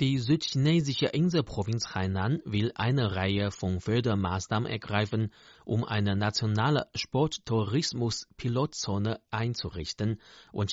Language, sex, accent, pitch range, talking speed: German, male, German, 100-130 Hz, 95 wpm